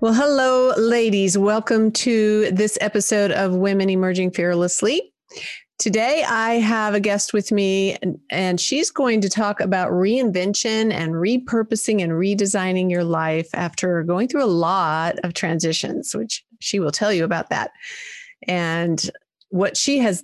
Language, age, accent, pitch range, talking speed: English, 40-59, American, 180-225 Hz, 145 wpm